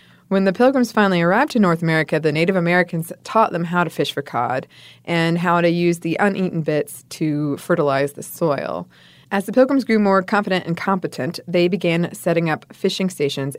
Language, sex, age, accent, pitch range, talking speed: English, female, 20-39, American, 160-205 Hz, 190 wpm